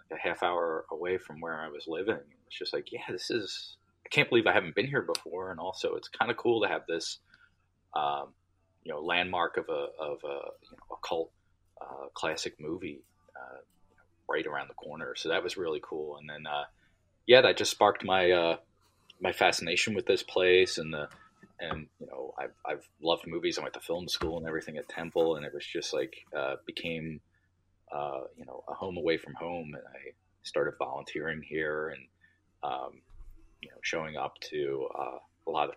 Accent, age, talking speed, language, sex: American, 30-49, 200 wpm, English, male